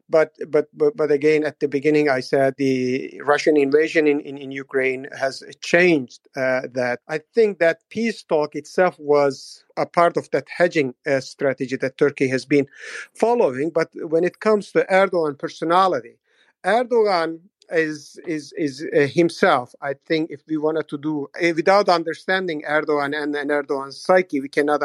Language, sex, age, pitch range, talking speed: English, male, 50-69, 150-190 Hz, 170 wpm